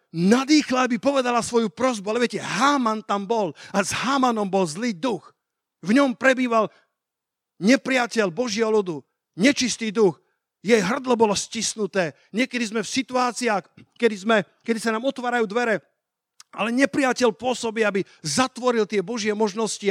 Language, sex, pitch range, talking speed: Slovak, male, 170-235 Hz, 140 wpm